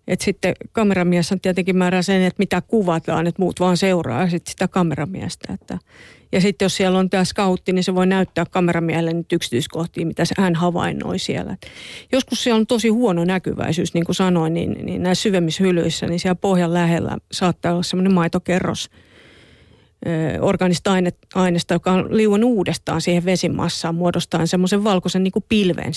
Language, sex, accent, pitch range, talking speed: Finnish, female, native, 170-190 Hz, 160 wpm